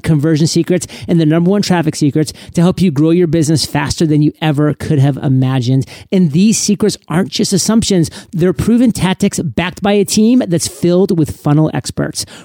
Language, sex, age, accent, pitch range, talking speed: English, male, 30-49, American, 160-195 Hz, 190 wpm